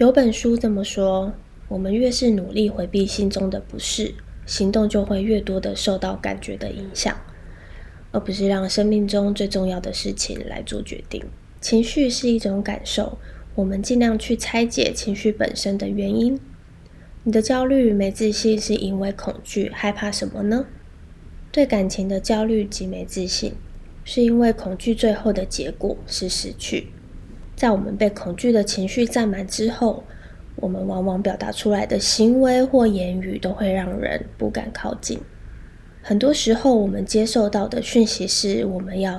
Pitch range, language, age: 190-230 Hz, Chinese, 20-39